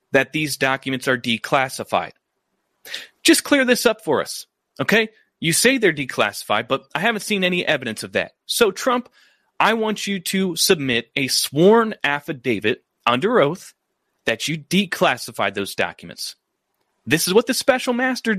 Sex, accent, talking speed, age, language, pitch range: male, American, 155 wpm, 30-49, English, 155-215 Hz